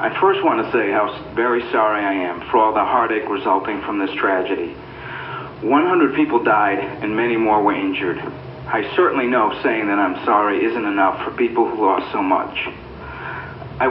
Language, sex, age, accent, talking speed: English, male, 50-69, American, 175 wpm